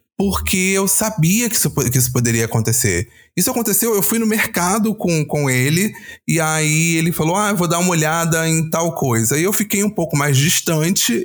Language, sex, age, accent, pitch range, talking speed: Portuguese, male, 20-39, Brazilian, 125-185 Hz, 205 wpm